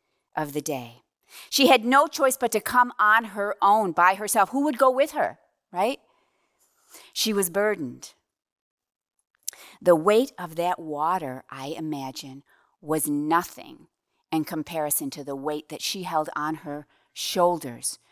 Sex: female